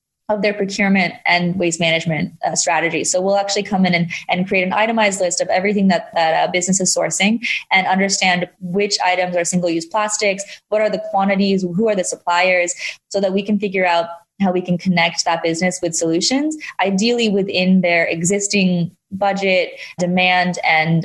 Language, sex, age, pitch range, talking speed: English, female, 20-39, 170-200 Hz, 180 wpm